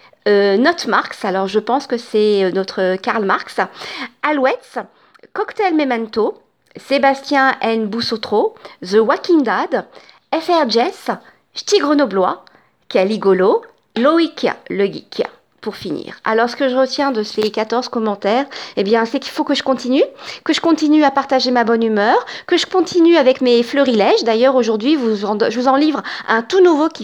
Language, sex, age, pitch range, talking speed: French, female, 40-59, 220-305 Hz, 160 wpm